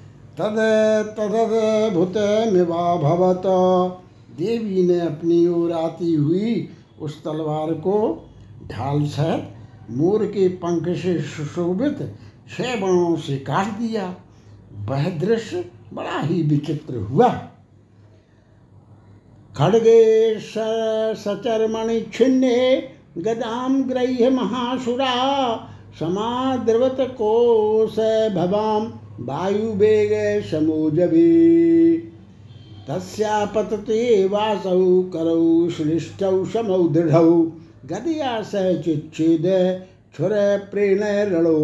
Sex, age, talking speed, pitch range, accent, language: male, 60-79, 65 wpm, 155-215 Hz, native, Hindi